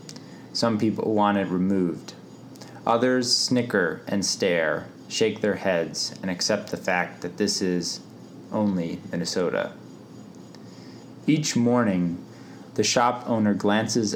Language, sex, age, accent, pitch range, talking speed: English, male, 20-39, American, 90-105 Hz, 115 wpm